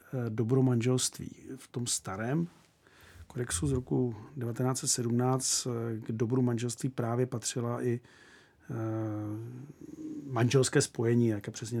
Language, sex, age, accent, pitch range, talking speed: Czech, male, 40-59, native, 115-145 Hz, 95 wpm